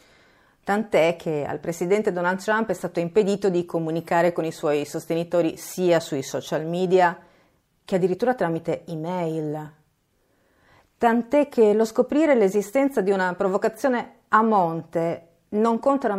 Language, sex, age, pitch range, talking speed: Italian, female, 40-59, 160-200 Hz, 130 wpm